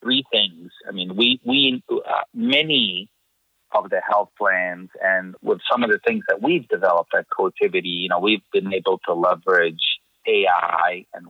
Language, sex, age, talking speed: English, male, 30-49, 170 wpm